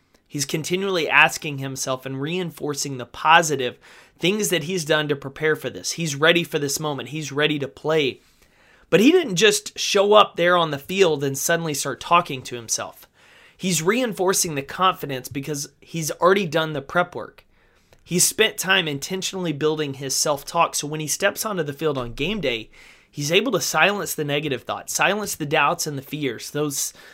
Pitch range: 135-165 Hz